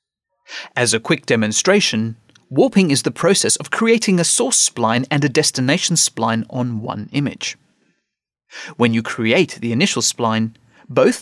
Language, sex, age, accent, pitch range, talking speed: English, male, 30-49, British, 125-200 Hz, 145 wpm